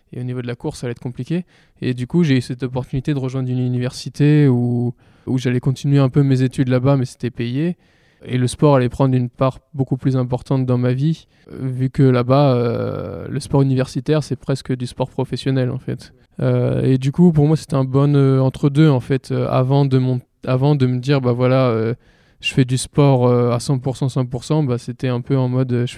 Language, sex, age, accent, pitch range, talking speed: French, male, 20-39, French, 125-140 Hz, 225 wpm